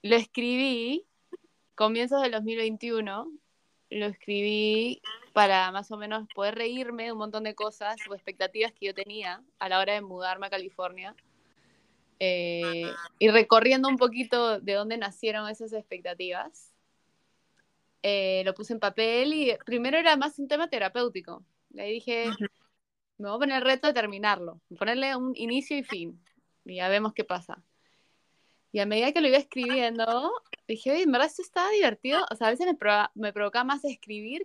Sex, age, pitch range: female, 20-39, 195-245 Hz